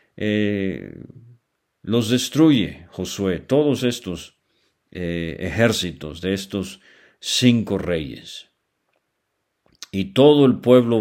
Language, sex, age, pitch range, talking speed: English, male, 50-69, 90-125 Hz, 85 wpm